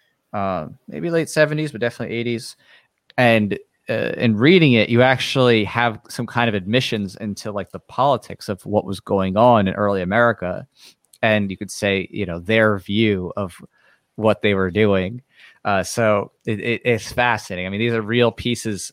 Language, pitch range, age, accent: English, 95-120 Hz, 30-49, American